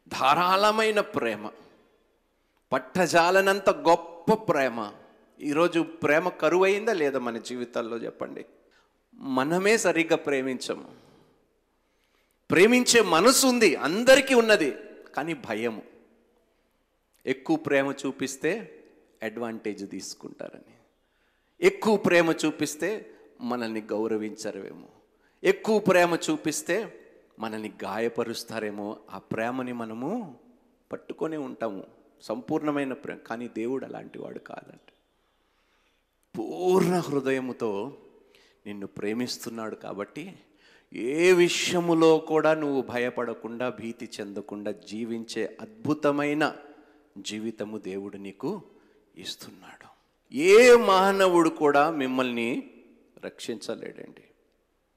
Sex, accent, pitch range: male, native, 115-175 Hz